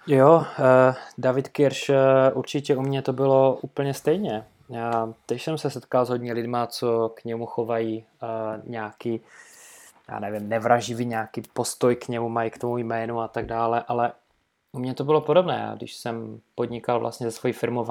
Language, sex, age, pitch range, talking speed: Czech, male, 20-39, 115-135 Hz, 175 wpm